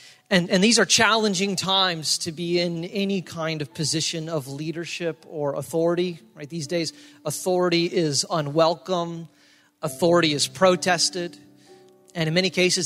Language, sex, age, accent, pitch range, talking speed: English, male, 40-59, American, 140-165 Hz, 140 wpm